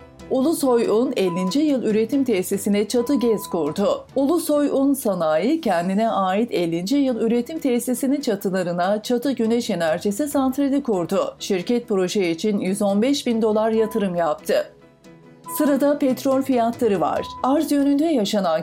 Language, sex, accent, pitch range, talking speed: Turkish, female, native, 195-260 Hz, 120 wpm